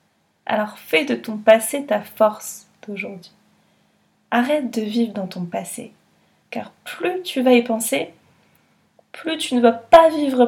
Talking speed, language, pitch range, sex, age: 150 wpm, French, 205-260 Hz, female, 20-39